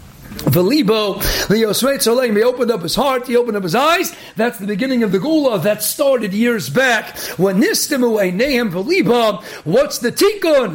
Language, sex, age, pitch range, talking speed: English, male, 50-69, 210-260 Hz, 145 wpm